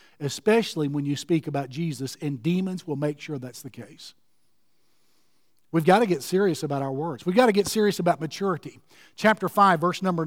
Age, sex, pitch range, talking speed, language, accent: 50-69, male, 170-225 Hz, 195 wpm, English, American